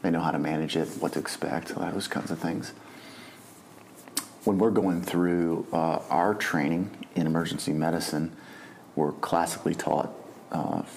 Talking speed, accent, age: 155 wpm, American, 40-59